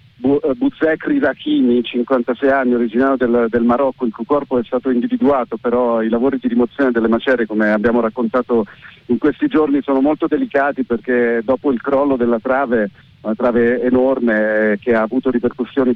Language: Italian